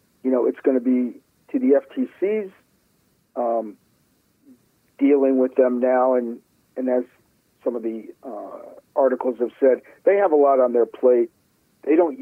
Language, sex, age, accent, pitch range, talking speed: English, male, 50-69, American, 120-145 Hz, 160 wpm